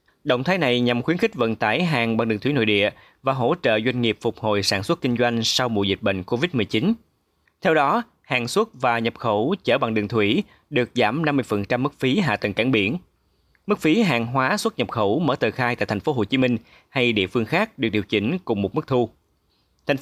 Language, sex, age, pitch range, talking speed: Vietnamese, male, 20-39, 105-140 Hz, 235 wpm